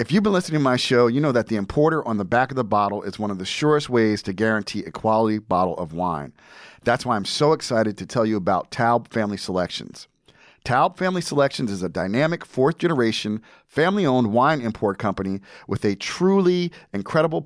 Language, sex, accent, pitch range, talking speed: English, male, American, 110-150 Hz, 200 wpm